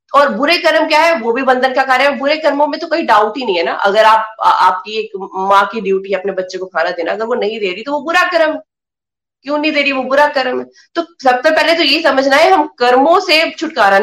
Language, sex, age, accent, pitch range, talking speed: Hindi, female, 20-39, native, 200-285 Hz, 265 wpm